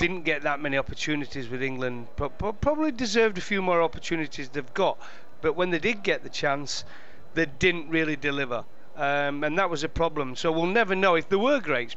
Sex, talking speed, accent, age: male, 205 wpm, British, 40-59